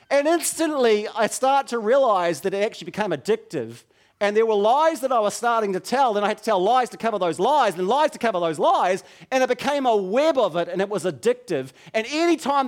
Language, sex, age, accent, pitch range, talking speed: English, male, 40-59, Australian, 160-245 Hz, 240 wpm